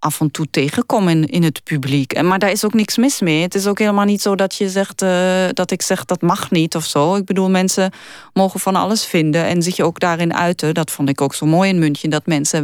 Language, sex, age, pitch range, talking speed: Dutch, female, 30-49, 155-185 Hz, 260 wpm